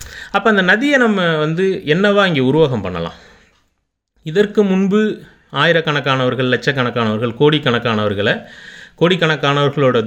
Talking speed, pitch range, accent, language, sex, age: 90 wpm, 115-175 Hz, native, Tamil, male, 30-49